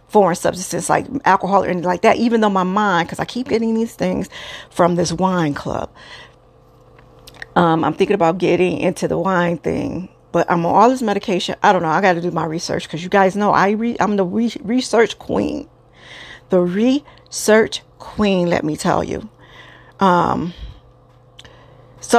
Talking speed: 180 wpm